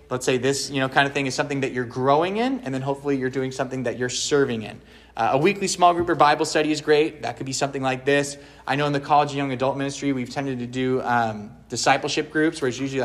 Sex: male